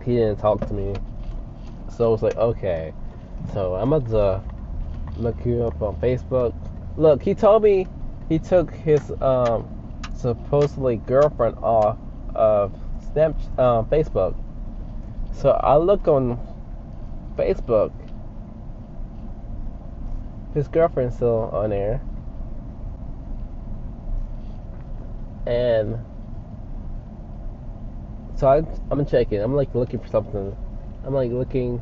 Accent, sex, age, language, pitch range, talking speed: American, male, 20-39, English, 105-130 Hz, 110 wpm